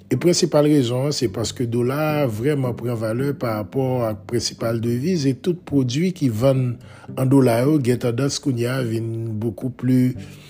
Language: English